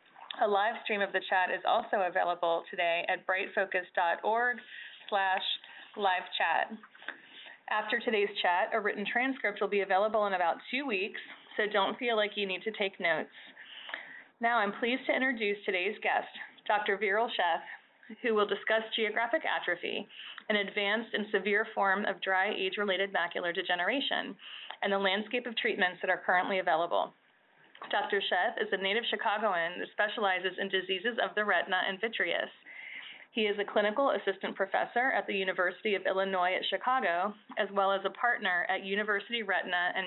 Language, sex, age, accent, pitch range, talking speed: English, female, 30-49, American, 190-220 Hz, 155 wpm